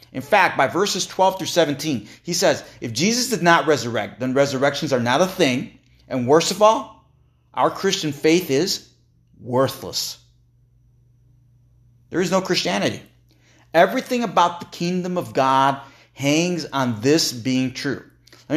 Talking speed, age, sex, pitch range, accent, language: 145 wpm, 30-49, male, 120-155 Hz, American, English